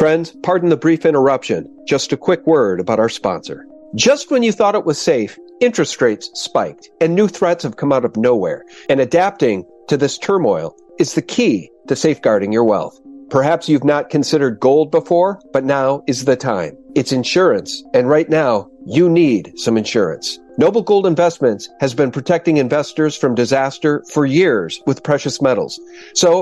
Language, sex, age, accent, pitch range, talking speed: English, male, 50-69, American, 140-190 Hz, 175 wpm